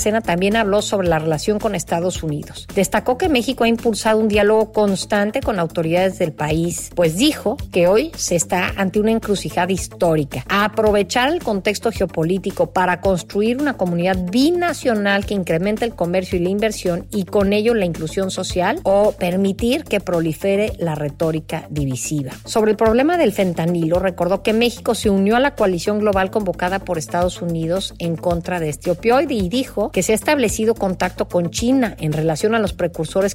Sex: female